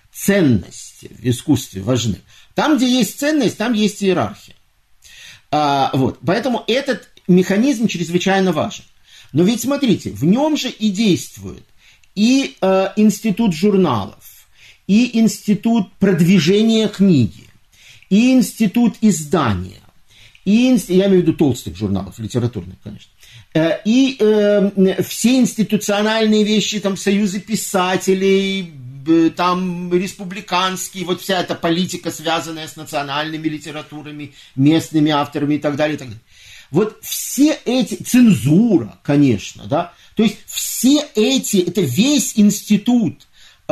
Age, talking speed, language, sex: 50-69, 120 wpm, Russian, male